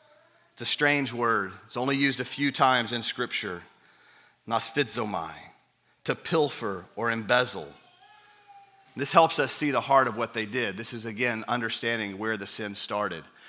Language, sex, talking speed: English, male, 155 wpm